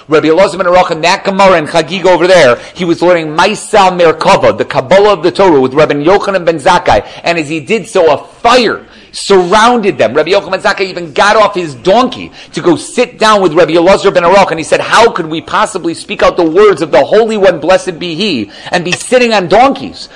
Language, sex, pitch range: English, male, 155-210 Hz